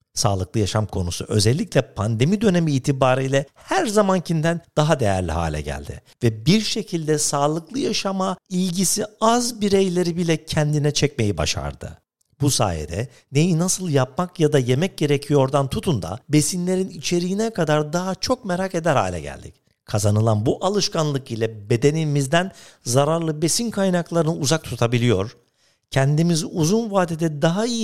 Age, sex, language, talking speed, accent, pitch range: 50-69, male, Turkish, 130 wpm, native, 125-185 Hz